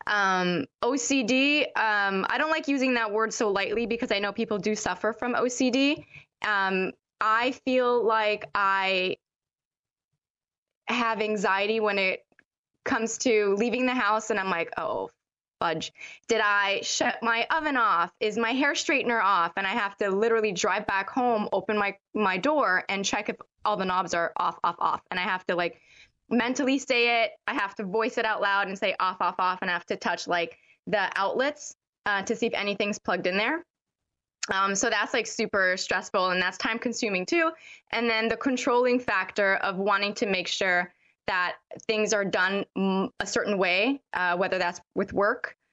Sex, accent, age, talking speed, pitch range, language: female, American, 20-39, 180 wpm, 190-235 Hz, English